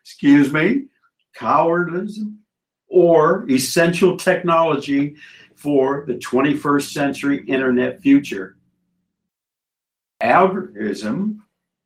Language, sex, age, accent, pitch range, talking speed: English, male, 60-79, American, 145-190 Hz, 65 wpm